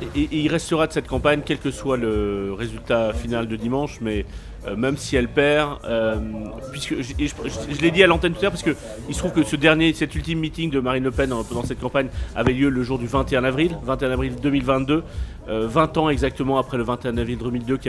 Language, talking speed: French, 230 wpm